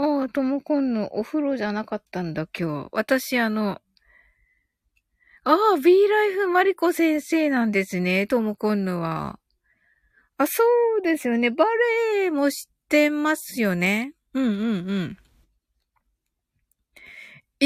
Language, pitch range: Japanese, 215-325 Hz